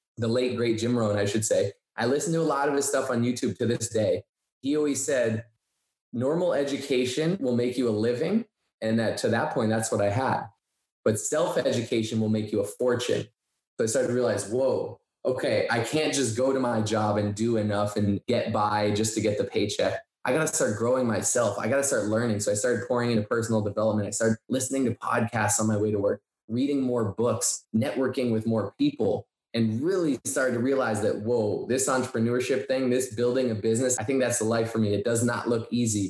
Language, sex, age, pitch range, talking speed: English, male, 20-39, 110-130 Hz, 220 wpm